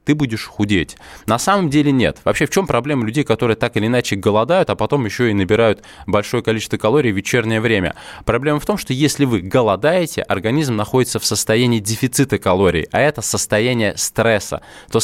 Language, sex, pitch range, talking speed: Russian, male, 100-130 Hz, 185 wpm